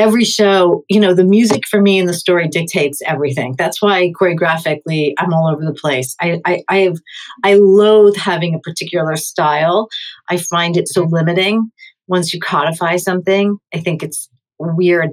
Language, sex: English, female